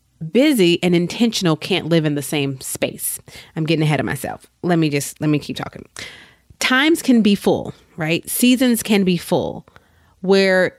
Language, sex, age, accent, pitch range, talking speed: English, female, 30-49, American, 155-200 Hz, 170 wpm